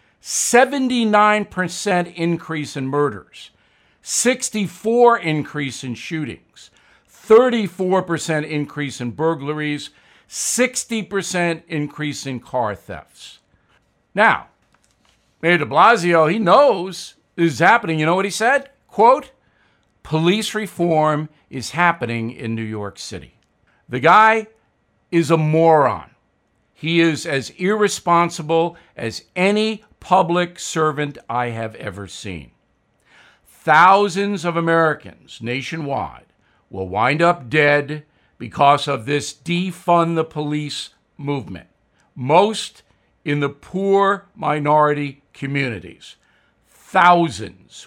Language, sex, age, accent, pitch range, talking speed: English, male, 50-69, American, 140-175 Hz, 100 wpm